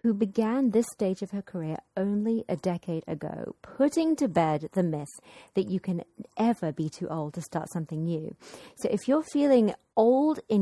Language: English